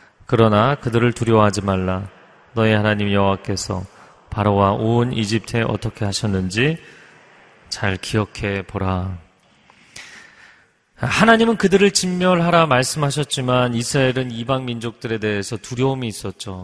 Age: 30-49